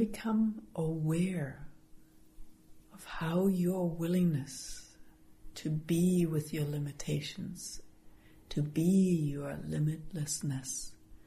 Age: 60-79